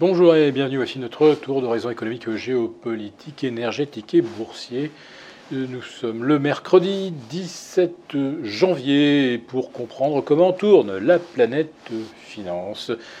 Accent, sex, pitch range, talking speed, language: French, male, 115-175 Hz, 115 wpm, French